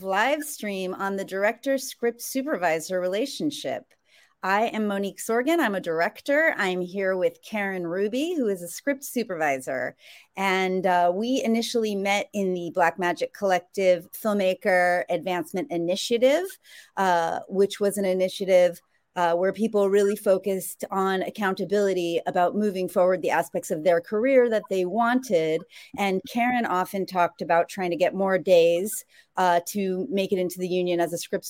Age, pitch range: 30-49, 185-245 Hz